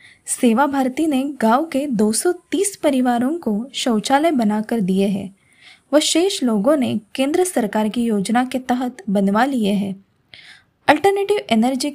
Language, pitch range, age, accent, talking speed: Hindi, 215-290 Hz, 20-39, native, 130 wpm